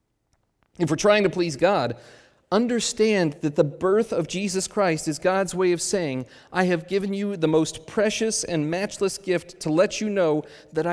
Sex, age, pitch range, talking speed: male, 40-59, 145-195 Hz, 180 wpm